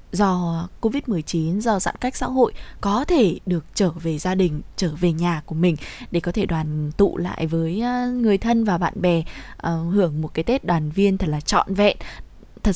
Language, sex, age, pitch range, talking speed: Vietnamese, female, 20-39, 180-245 Hz, 200 wpm